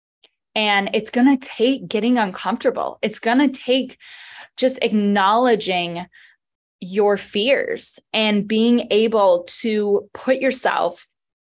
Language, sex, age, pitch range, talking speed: English, female, 20-39, 200-250 Hz, 110 wpm